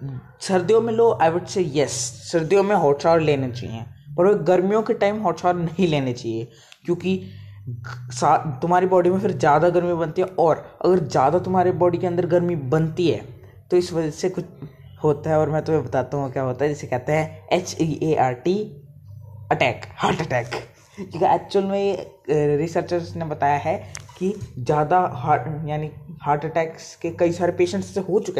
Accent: native